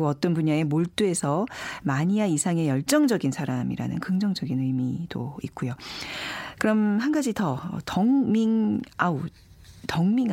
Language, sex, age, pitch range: Korean, female, 40-59, 150-240 Hz